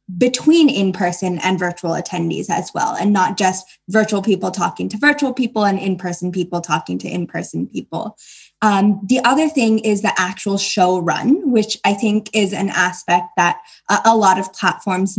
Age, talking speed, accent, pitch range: 10-29, 170 wpm, American, 190-230 Hz